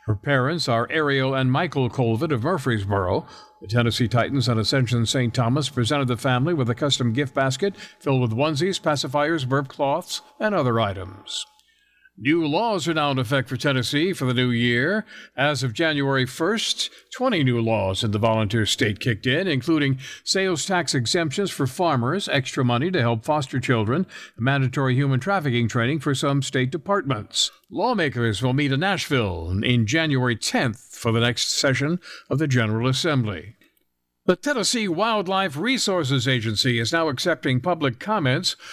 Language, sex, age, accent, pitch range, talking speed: English, male, 60-79, American, 120-160 Hz, 160 wpm